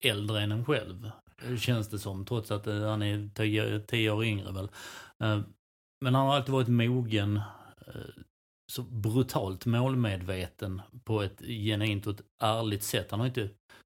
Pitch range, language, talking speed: 100-120 Hz, Swedish, 150 wpm